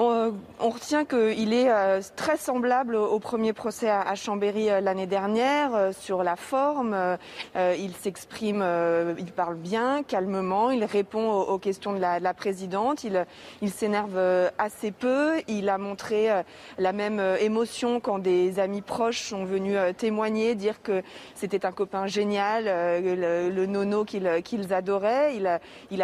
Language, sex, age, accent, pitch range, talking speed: French, female, 30-49, French, 195-225 Hz, 130 wpm